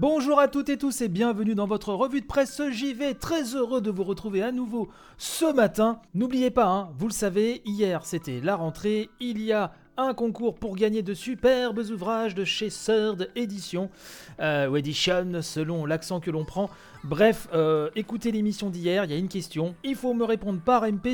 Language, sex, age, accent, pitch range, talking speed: French, male, 30-49, French, 175-240 Hz, 200 wpm